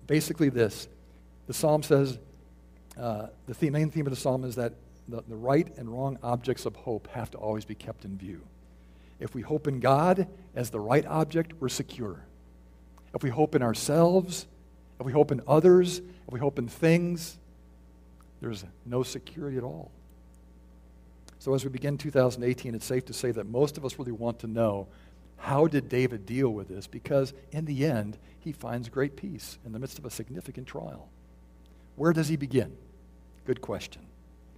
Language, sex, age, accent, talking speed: English, male, 50-69, American, 180 wpm